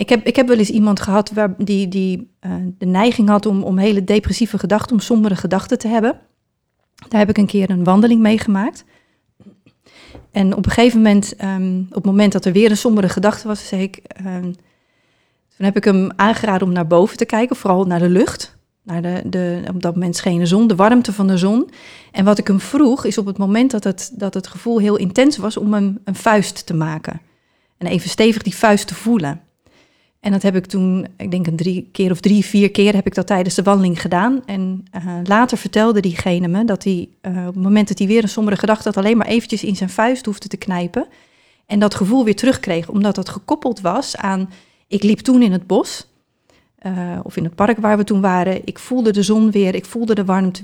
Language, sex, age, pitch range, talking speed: Dutch, female, 40-59, 185-220 Hz, 230 wpm